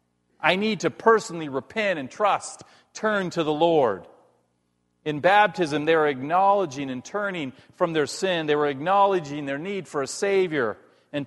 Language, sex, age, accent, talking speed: English, male, 40-59, American, 160 wpm